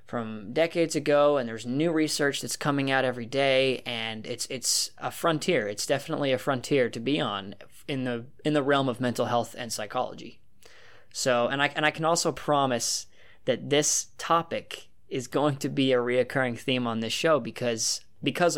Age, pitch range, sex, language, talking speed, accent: 20-39, 115-135 Hz, male, English, 185 wpm, American